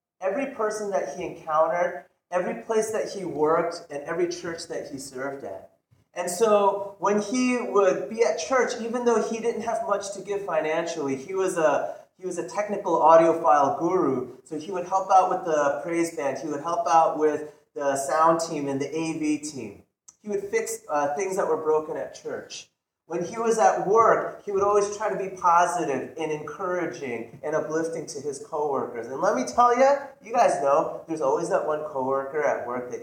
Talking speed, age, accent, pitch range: 200 wpm, 30-49, American, 145-200 Hz